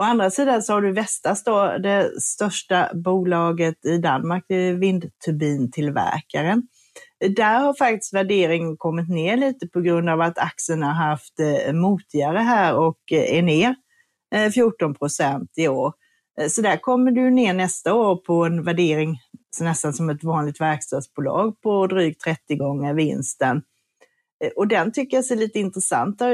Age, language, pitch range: 40-59, Swedish, 165-230 Hz